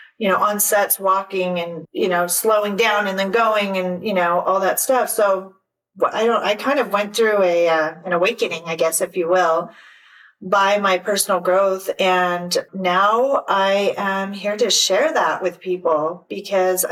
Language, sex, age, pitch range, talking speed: English, female, 40-59, 185-245 Hz, 180 wpm